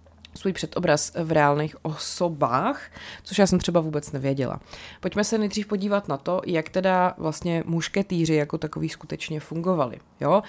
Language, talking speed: Czech, 150 wpm